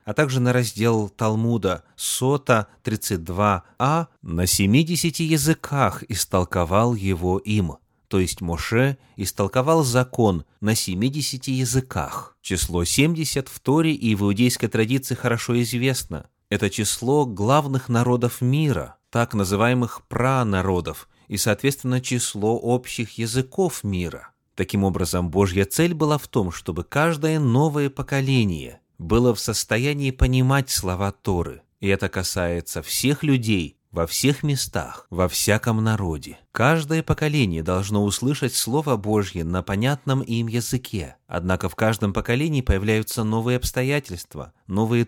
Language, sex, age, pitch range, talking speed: Russian, male, 30-49, 95-135 Hz, 120 wpm